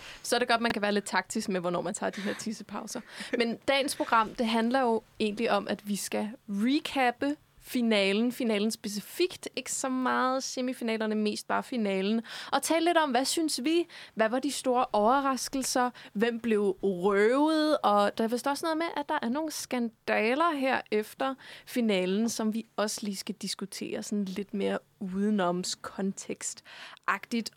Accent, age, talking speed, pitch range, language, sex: native, 20-39, 170 wpm, 210-265 Hz, Danish, female